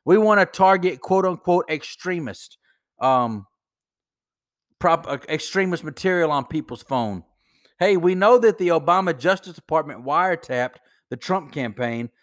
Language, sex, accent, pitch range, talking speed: English, male, American, 165-210 Hz, 130 wpm